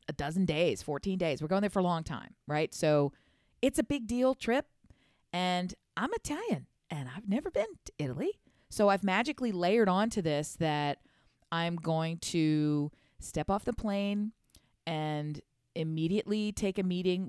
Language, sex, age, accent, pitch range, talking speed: English, female, 40-59, American, 150-185 Hz, 165 wpm